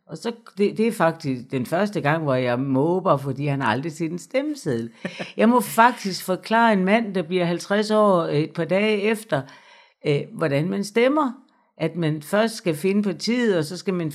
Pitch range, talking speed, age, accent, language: 150-210 Hz, 200 wpm, 60-79, native, Danish